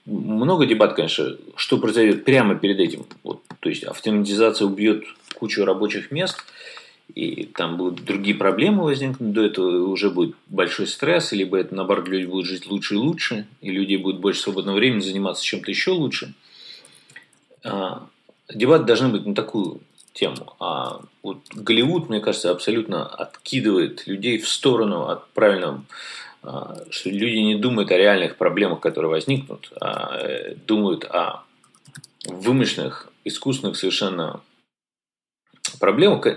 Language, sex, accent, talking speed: Russian, male, native, 130 wpm